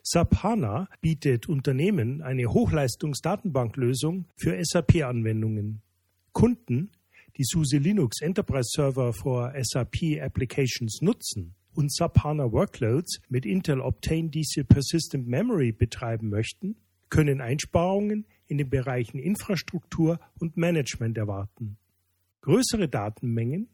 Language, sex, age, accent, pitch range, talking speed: German, male, 40-59, German, 120-165 Hz, 100 wpm